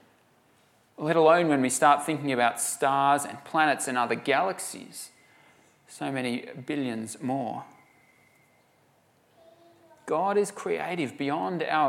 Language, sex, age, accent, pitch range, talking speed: English, male, 40-59, Australian, 130-175 Hz, 110 wpm